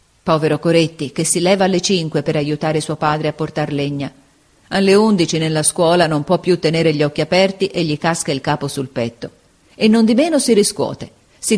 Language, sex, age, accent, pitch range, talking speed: Italian, female, 40-59, native, 145-190 Hz, 200 wpm